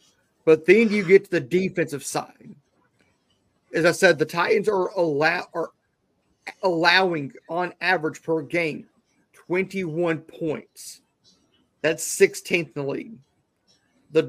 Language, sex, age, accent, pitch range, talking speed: English, male, 40-59, American, 155-190 Hz, 120 wpm